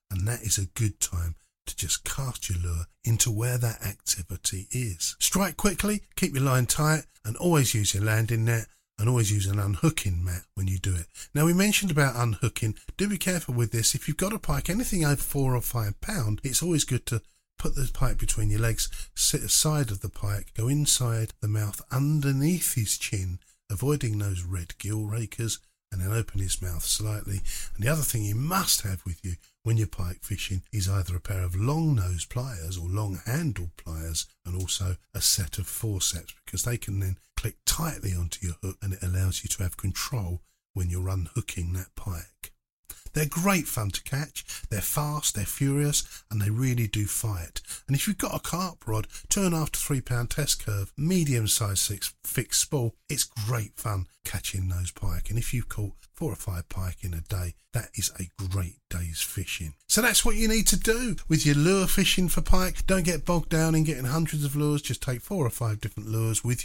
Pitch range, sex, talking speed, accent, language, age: 95-145 Hz, male, 205 wpm, British, English, 50-69